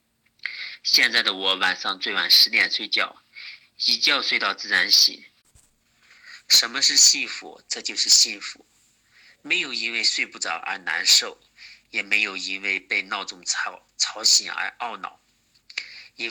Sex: male